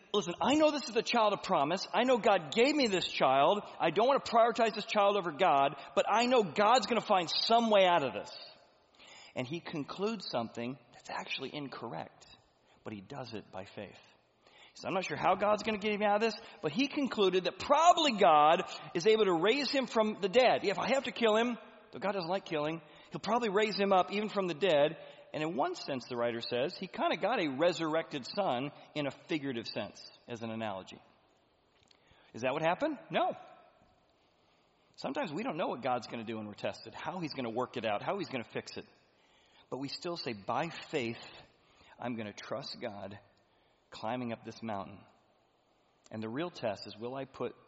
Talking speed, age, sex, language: 215 wpm, 40-59, male, English